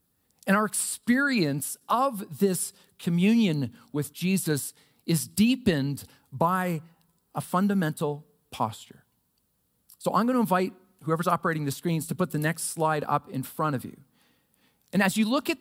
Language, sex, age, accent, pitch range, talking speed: English, male, 40-59, American, 160-225 Hz, 145 wpm